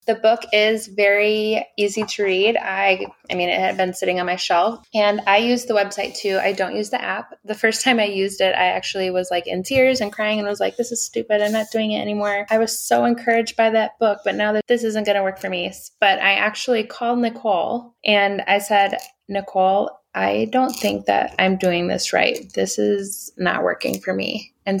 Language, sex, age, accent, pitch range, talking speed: English, female, 20-39, American, 185-220 Hz, 230 wpm